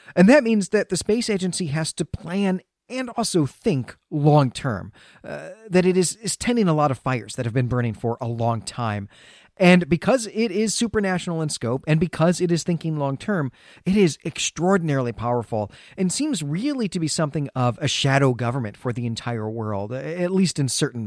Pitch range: 115-180 Hz